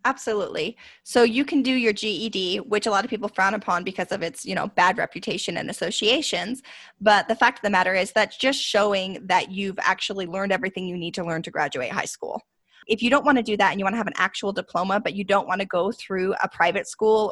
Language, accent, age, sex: English, American, 20-39, female